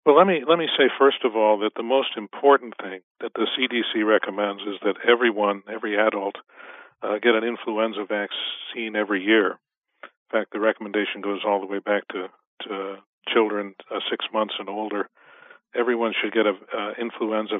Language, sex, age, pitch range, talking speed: English, male, 50-69, 105-120 Hz, 180 wpm